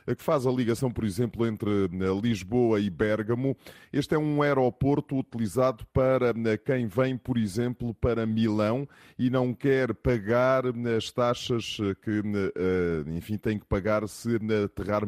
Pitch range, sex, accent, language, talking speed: 100-125 Hz, male, Brazilian, Portuguese, 140 wpm